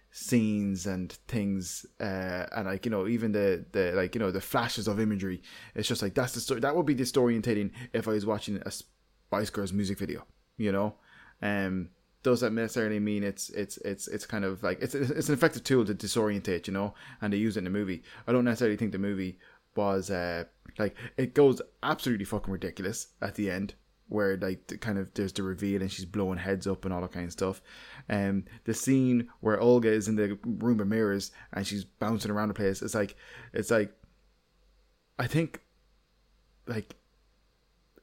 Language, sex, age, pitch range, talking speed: English, male, 20-39, 95-120 Hz, 200 wpm